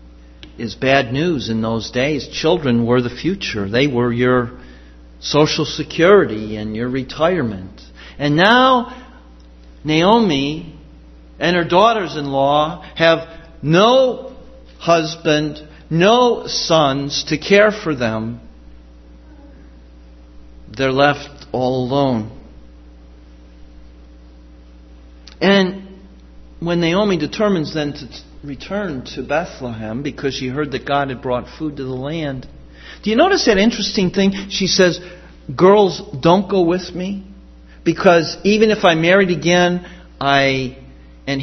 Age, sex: 50-69, male